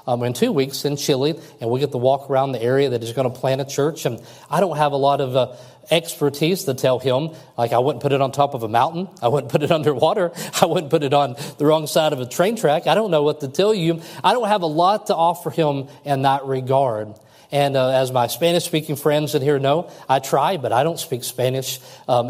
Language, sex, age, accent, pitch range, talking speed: English, male, 40-59, American, 125-160 Hz, 255 wpm